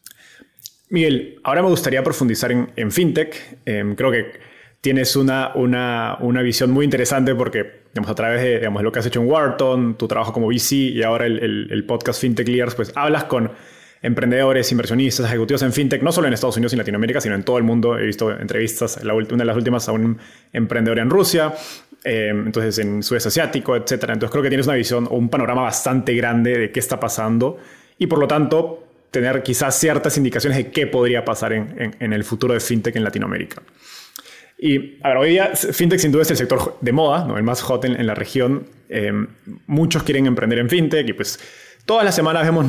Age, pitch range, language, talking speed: 20-39, 115-145 Hz, Spanish, 205 wpm